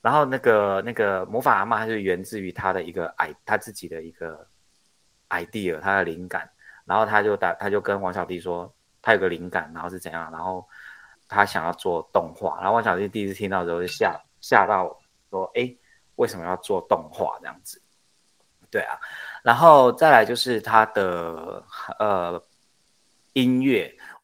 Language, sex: Chinese, male